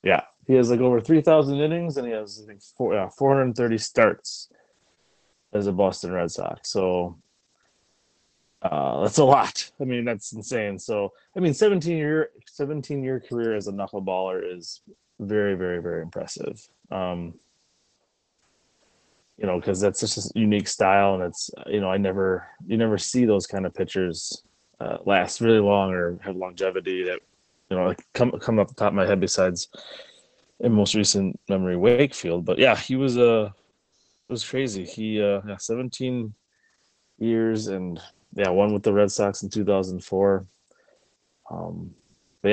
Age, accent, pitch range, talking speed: 20-39, American, 95-120 Hz, 165 wpm